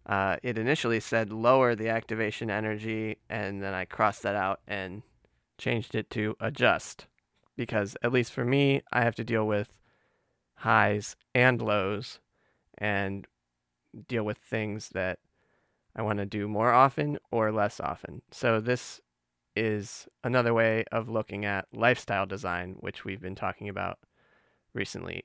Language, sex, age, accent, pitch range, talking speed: English, male, 20-39, American, 100-120 Hz, 145 wpm